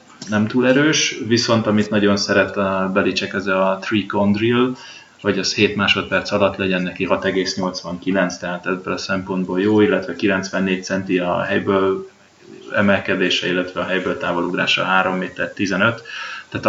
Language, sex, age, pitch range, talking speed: Hungarian, male, 20-39, 95-110 Hz, 145 wpm